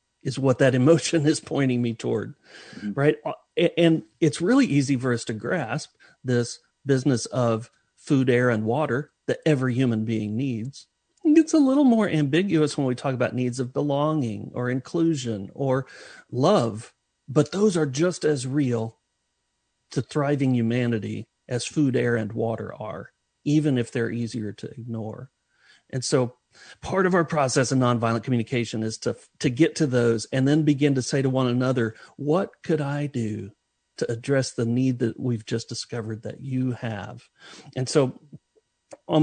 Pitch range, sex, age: 120-155 Hz, male, 40-59